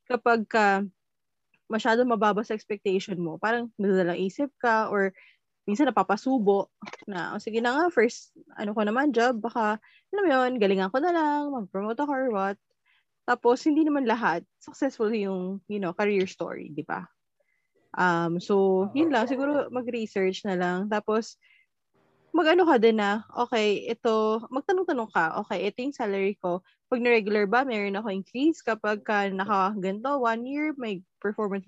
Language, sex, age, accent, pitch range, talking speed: Filipino, female, 20-39, native, 195-255 Hz, 155 wpm